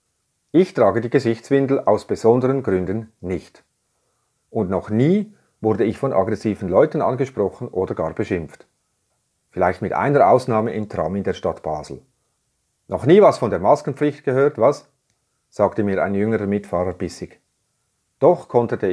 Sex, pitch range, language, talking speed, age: male, 95-130 Hz, German, 145 wpm, 40-59